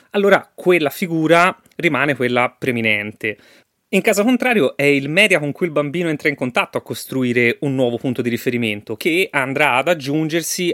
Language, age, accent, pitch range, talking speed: Italian, 30-49, native, 125-180 Hz, 170 wpm